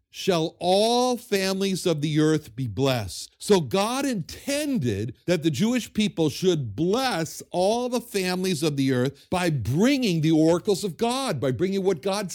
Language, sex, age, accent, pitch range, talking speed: English, male, 60-79, American, 130-205 Hz, 160 wpm